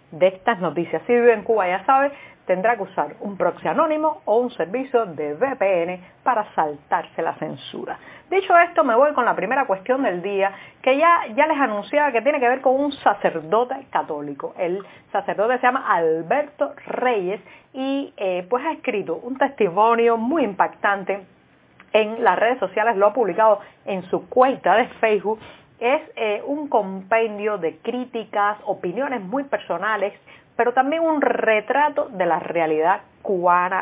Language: Spanish